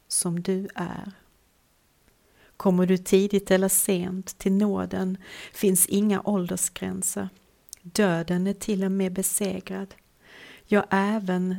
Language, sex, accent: Swedish, female, native